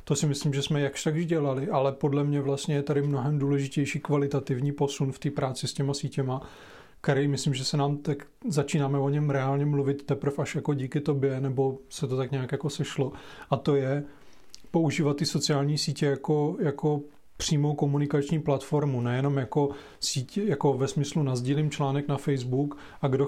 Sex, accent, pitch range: male, native, 135-145 Hz